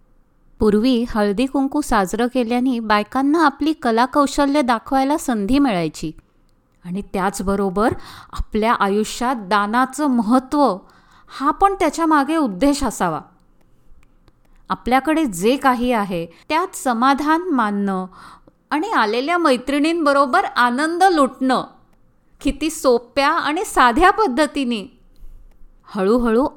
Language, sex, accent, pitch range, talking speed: Marathi, female, native, 230-290 Hz, 90 wpm